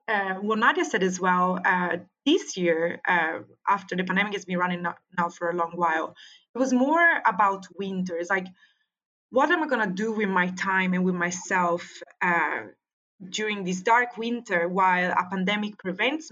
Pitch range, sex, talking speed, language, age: 180-235 Hz, female, 180 wpm, English, 20-39